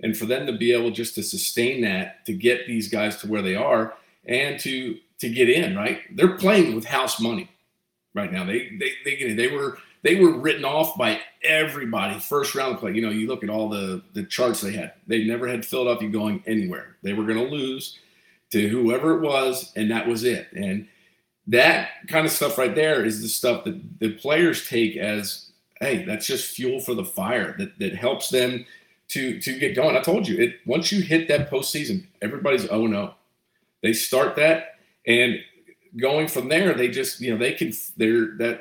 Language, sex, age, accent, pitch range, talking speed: English, male, 40-59, American, 110-160 Hz, 205 wpm